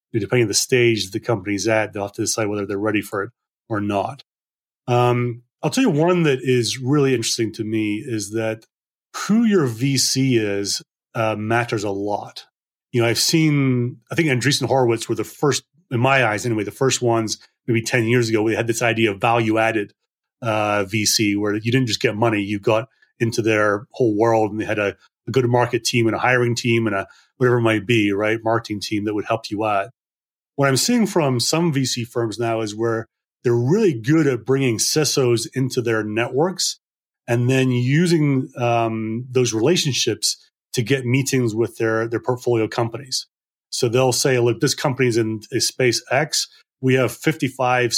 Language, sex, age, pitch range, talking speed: English, male, 30-49, 110-130 Hz, 195 wpm